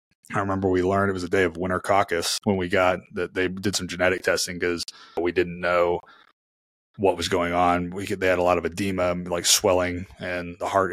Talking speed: 225 wpm